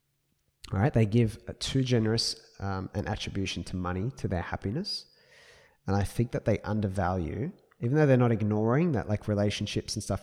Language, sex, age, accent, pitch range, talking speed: English, male, 20-39, Australian, 90-110 Hz, 180 wpm